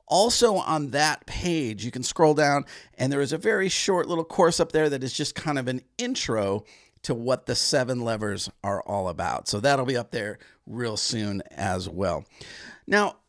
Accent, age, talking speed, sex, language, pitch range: American, 40-59, 195 wpm, male, English, 125-175 Hz